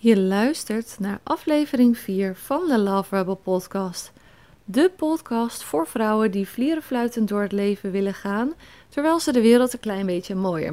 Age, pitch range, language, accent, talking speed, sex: 30-49, 195-265 Hz, Dutch, Dutch, 160 wpm, female